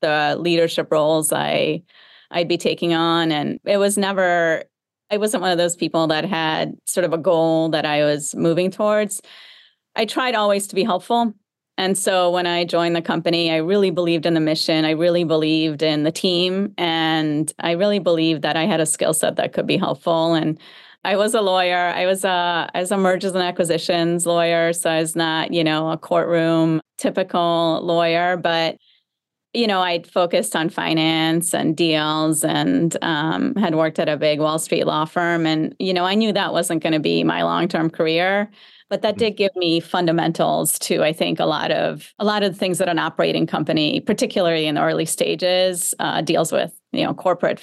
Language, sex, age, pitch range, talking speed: English, female, 30-49, 160-185 Hz, 200 wpm